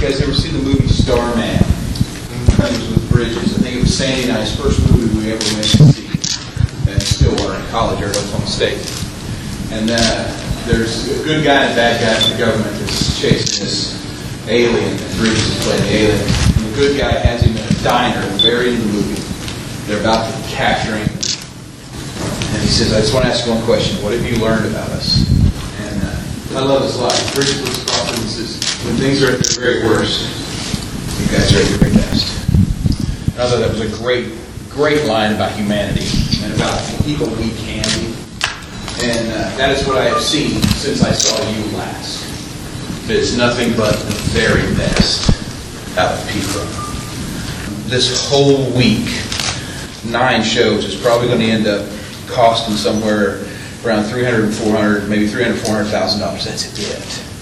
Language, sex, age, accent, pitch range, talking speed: English, male, 40-59, American, 105-120 Hz, 180 wpm